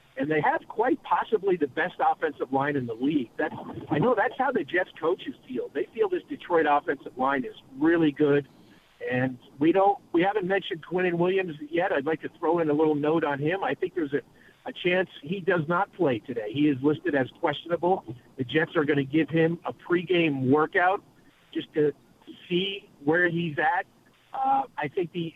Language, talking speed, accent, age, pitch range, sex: English, 205 wpm, American, 50-69, 145-195 Hz, male